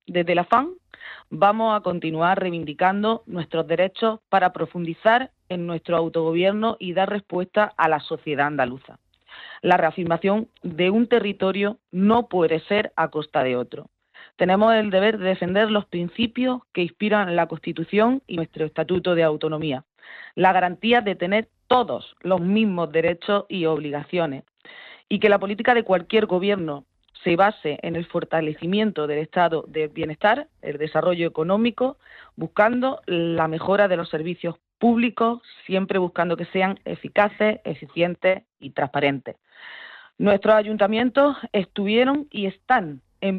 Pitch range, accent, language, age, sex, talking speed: 170-215 Hz, Spanish, Spanish, 40-59, female, 135 wpm